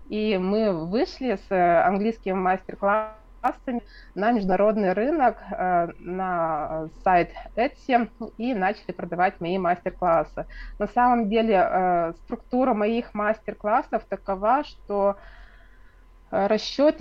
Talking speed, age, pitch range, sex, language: 90 wpm, 20-39, 185-225 Hz, female, Russian